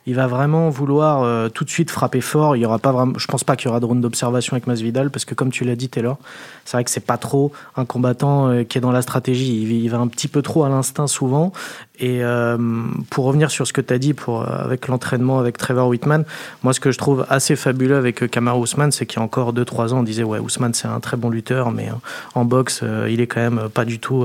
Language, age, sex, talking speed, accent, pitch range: French, 20-39, male, 275 wpm, French, 120-145 Hz